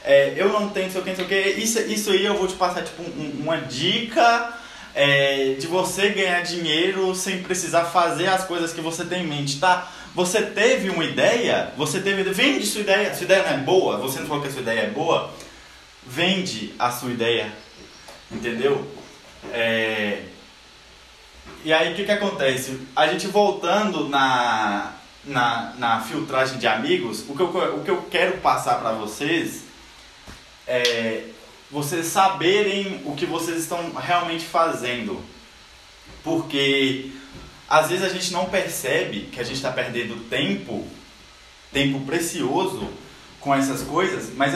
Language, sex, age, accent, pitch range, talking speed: Portuguese, male, 20-39, Brazilian, 140-190 Hz, 160 wpm